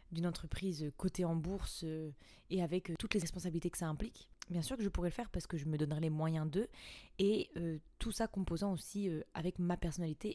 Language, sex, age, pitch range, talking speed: French, female, 20-39, 160-185 Hz, 230 wpm